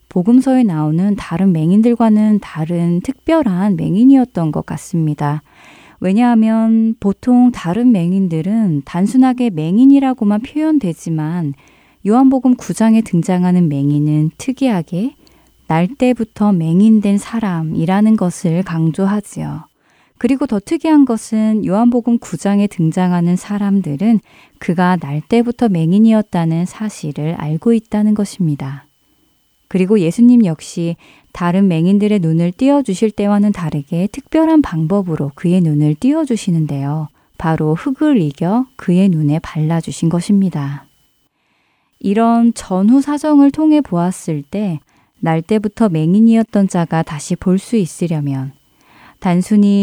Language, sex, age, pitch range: Korean, female, 20-39, 165-230 Hz